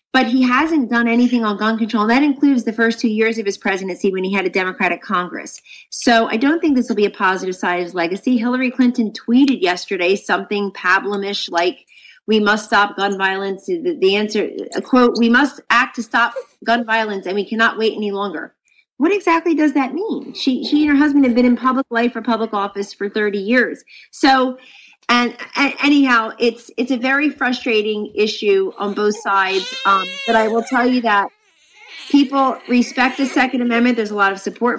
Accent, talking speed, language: American, 200 wpm, English